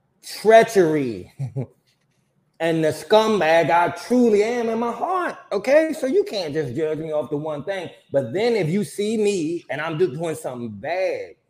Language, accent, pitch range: English, American, 130-175 Hz